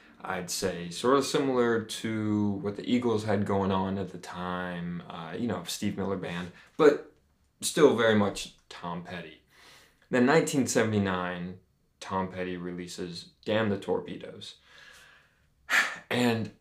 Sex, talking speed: male, 130 wpm